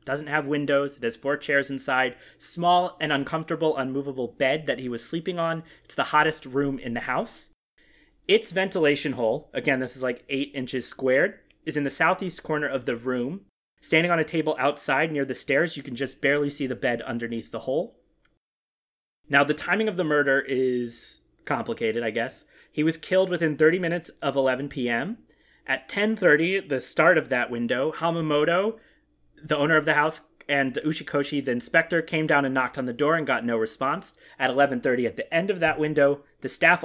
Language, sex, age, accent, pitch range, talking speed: English, male, 30-49, American, 130-160 Hz, 190 wpm